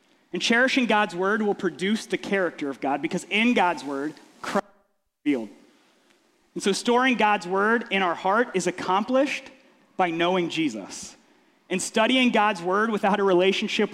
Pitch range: 170-245 Hz